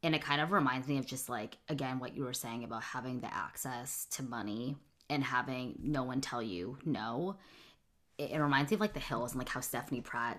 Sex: female